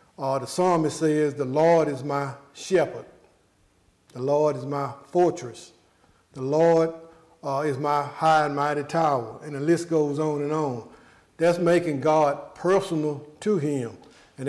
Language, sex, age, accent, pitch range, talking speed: English, male, 50-69, American, 145-170 Hz, 155 wpm